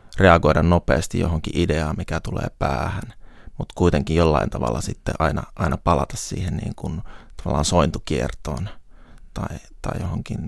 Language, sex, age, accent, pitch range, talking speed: Finnish, male, 30-49, native, 80-100 Hz, 130 wpm